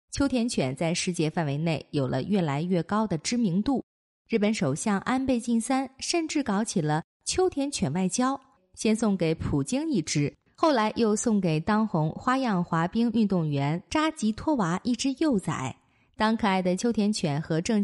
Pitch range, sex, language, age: 170-255 Hz, female, Chinese, 20-39